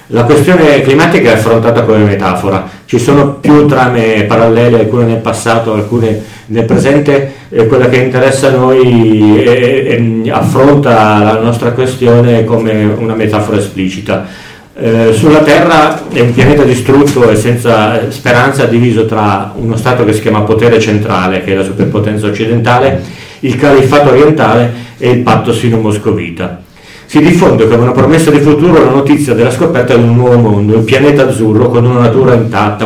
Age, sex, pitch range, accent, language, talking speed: 40-59, male, 110-135 Hz, native, Italian, 160 wpm